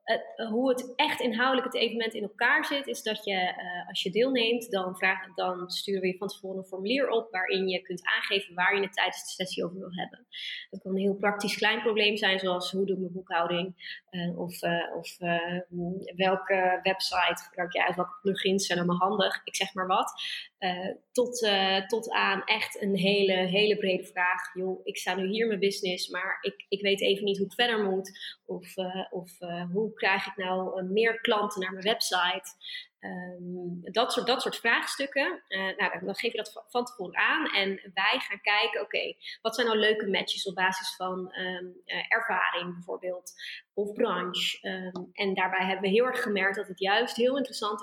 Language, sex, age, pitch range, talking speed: Dutch, female, 20-39, 185-215 Hz, 200 wpm